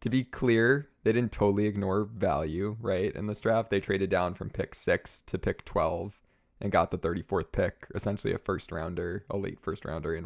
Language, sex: English, male